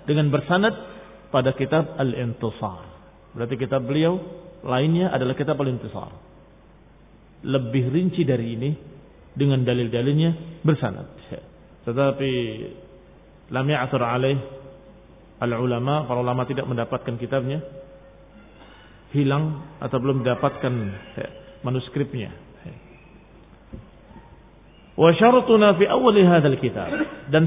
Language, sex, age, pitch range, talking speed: Indonesian, male, 40-59, 130-170 Hz, 75 wpm